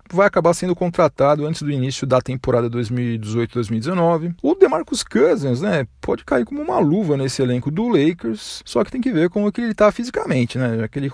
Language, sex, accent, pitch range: Portuguese, male, Brazilian, 125-170 Hz